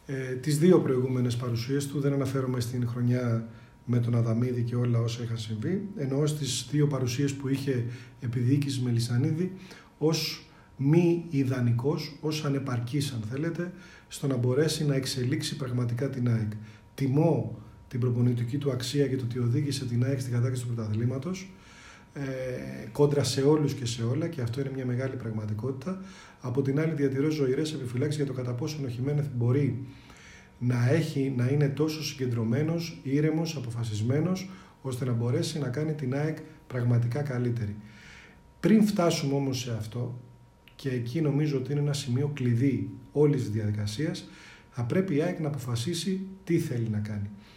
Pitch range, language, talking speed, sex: 120-150 Hz, Greek, 155 wpm, male